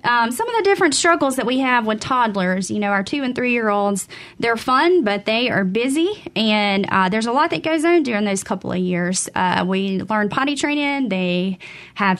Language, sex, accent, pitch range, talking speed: English, female, American, 195-270 Hz, 220 wpm